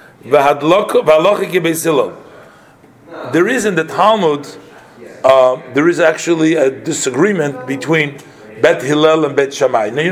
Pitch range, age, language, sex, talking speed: 155-185 Hz, 50-69, English, male, 115 wpm